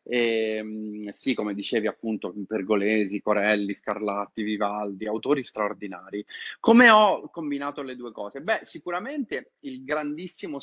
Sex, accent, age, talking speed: male, native, 30-49, 120 wpm